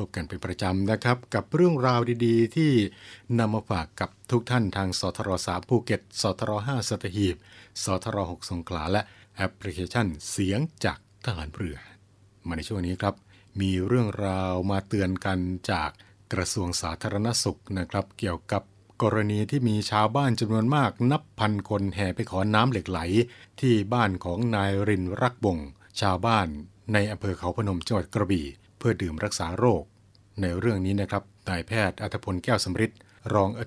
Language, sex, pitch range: Thai, male, 95-115 Hz